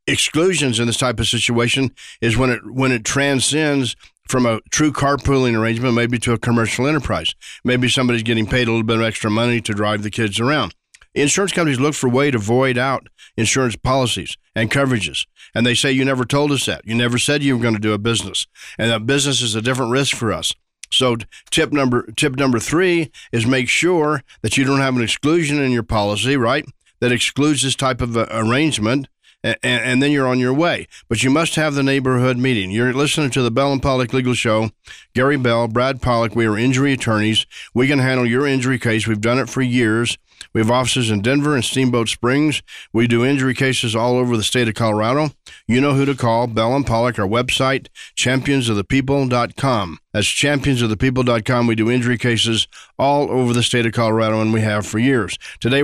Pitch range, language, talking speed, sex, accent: 115-135 Hz, English, 205 wpm, male, American